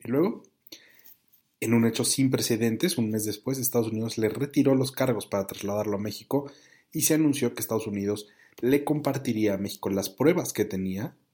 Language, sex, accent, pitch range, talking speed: Spanish, male, Mexican, 105-135 Hz, 180 wpm